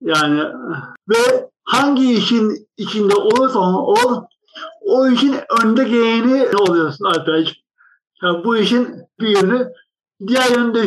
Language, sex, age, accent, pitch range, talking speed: Turkish, male, 60-79, native, 200-260 Hz, 115 wpm